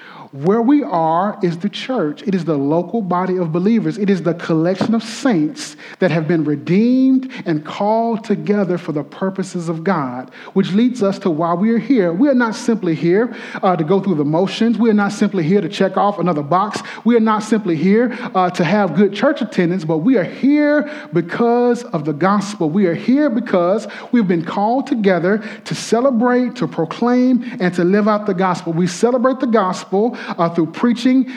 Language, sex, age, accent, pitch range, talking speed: English, male, 40-59, American, 175-235 Hz, 200 wpm